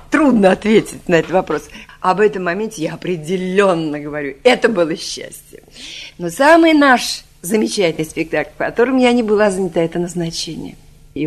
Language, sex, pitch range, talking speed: Russian, female, 155-200 Hz, 150 wpm